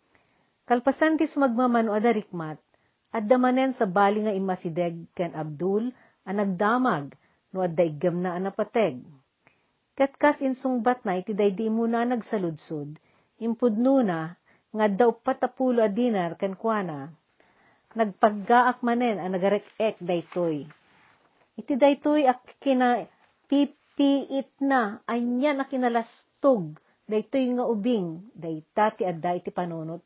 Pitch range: 180-245 Hz